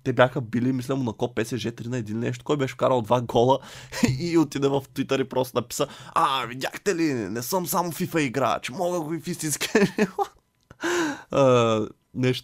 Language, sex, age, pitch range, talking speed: Bulgarian, male, 20-39, 110-130 Hz, 175 wpm